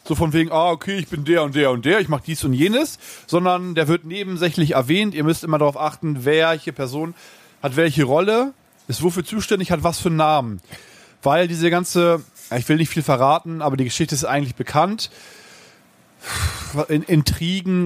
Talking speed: 185 wpm